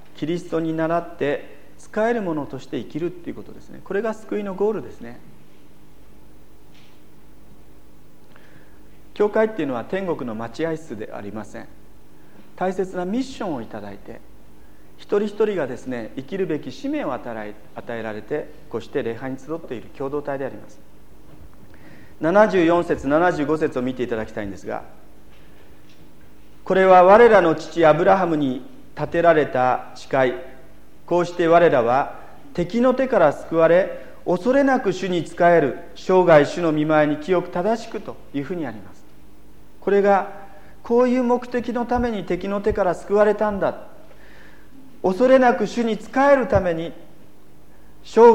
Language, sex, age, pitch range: Japanese, male, 40-59, 145-210 Hz